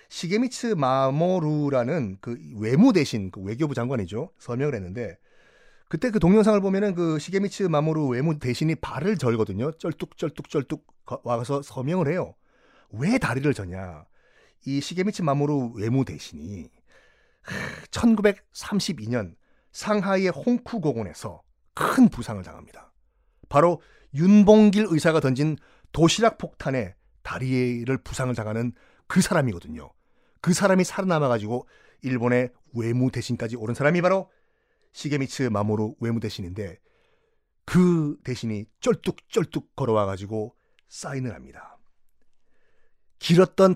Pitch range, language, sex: 120-185 Hz, Korean, male